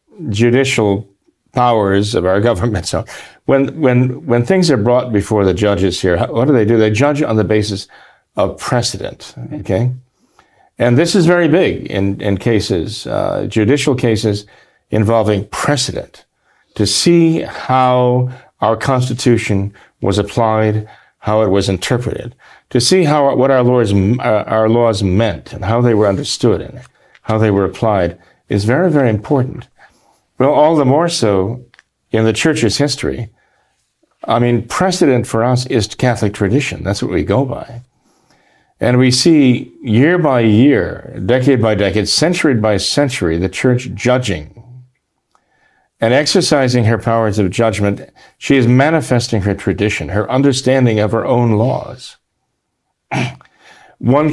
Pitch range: 105-130 Hz